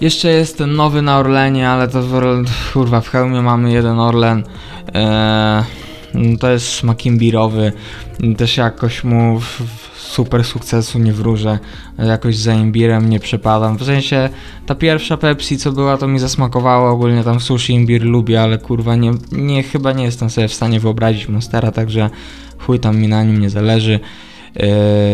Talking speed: 165 wpm